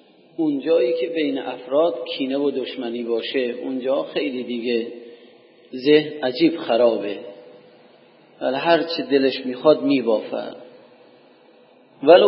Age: 40-59